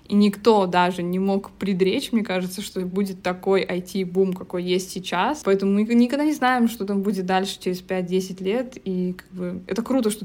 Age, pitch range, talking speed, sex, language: 20-39, 185-215 Hz, 195 wpm, female, Russian